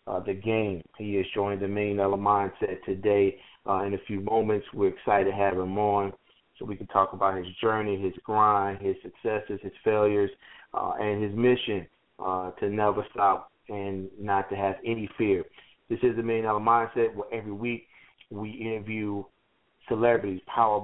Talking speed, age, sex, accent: 175 wpm, 30-49, male, American